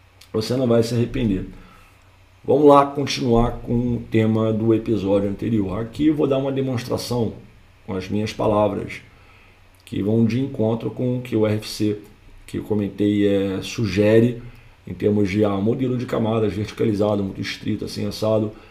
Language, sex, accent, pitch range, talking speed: Portuguese, male, Brazilian, 100-135 Hz, 155 wpm